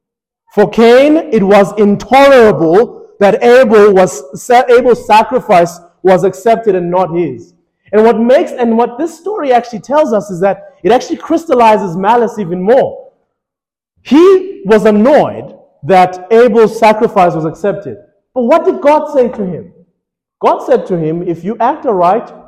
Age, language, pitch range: 30-49, English, 195-275 Hz